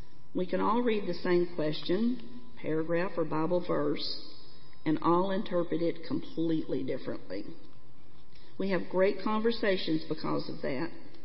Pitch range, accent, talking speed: 165-200 Hz, American, 130 wpm